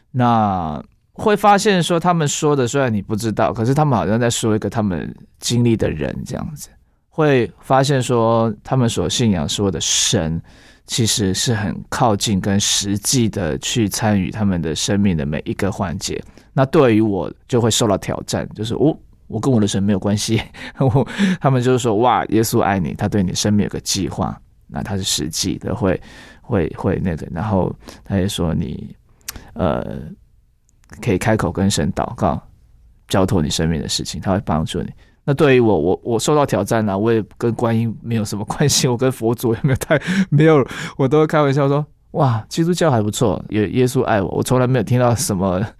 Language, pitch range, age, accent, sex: Chinese, 105-135 Hz, 20-39, native, male